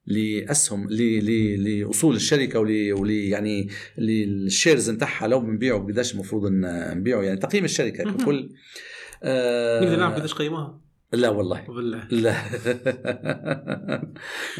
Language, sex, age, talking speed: Arabic, male, 50-69, 100 wpm